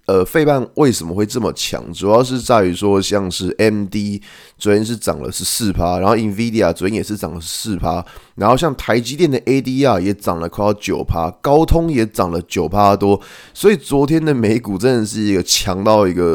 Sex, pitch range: male, 95-130 Hz